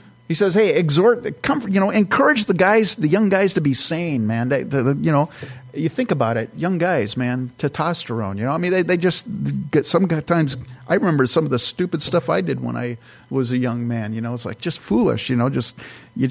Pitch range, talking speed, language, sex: 125-165 Hz, 235 wpm, English, male